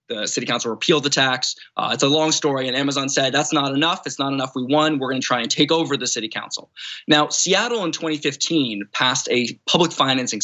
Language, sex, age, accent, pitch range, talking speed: English, male, 20-39, American, 135-185 Hz, 225 wpm